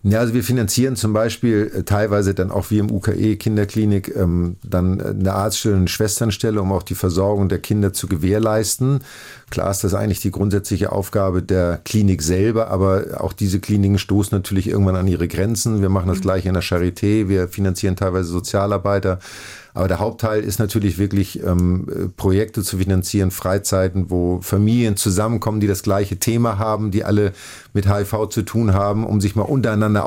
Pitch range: 95-110 Hz